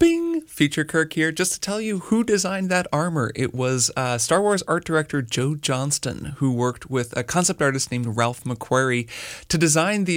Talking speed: 195 wpm